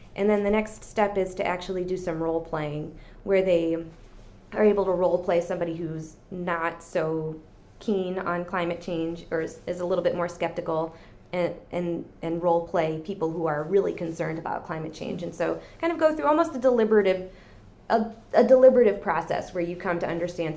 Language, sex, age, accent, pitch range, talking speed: English, female, 20-39, American, 170-230 Hz, 195 wpm